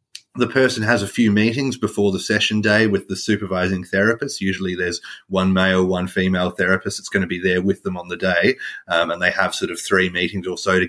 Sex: male